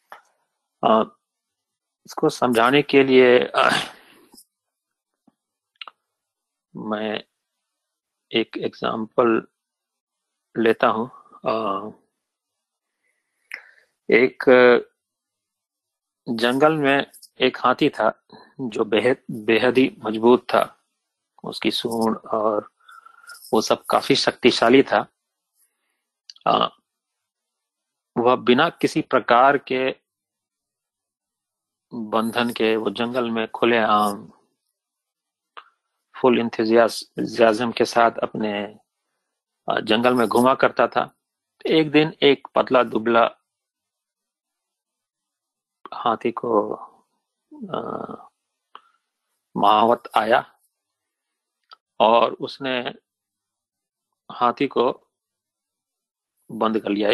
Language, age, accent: Hindi, 40-59, native